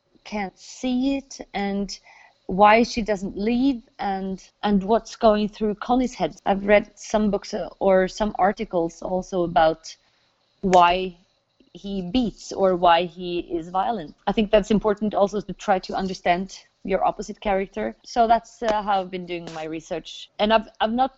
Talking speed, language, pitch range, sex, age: 160 wpm, Finnish, 185-225 Hz, female, 30-49